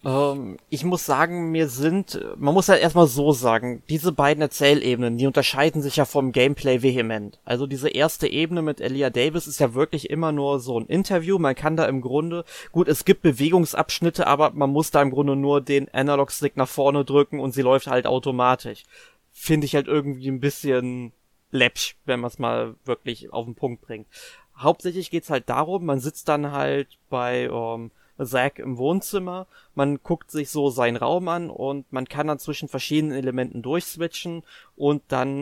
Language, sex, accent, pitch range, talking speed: German, male, German, 130-155 Hz, 185 wpm